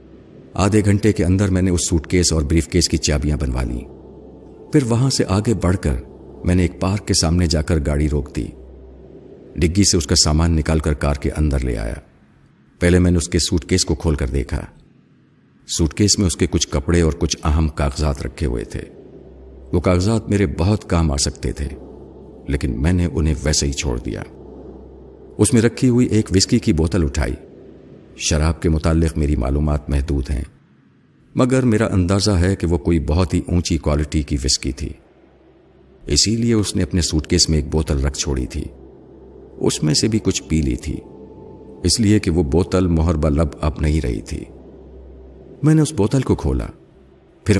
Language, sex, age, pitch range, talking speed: Urdu, male, 50-69, 70-95 Hz, 185 wpm